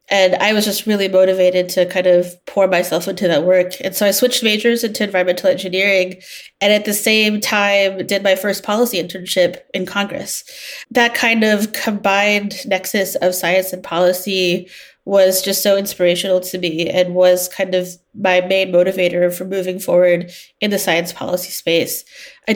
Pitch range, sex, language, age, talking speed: 185-210 Hz, female, English, 30-49, 175 wpm